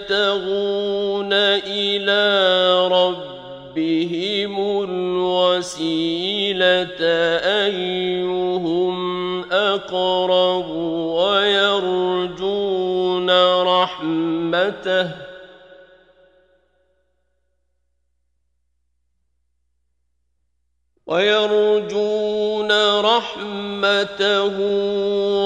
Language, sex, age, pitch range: Turkish, male, 40-59, 160-200 Hz